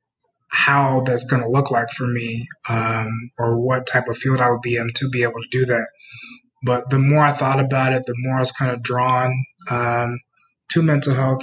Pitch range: 120-140 Hz